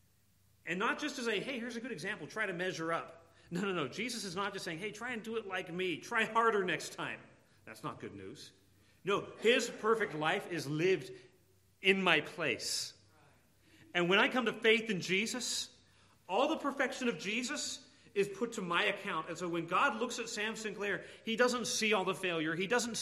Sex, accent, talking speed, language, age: male, American, 210 wpm, English, 40-59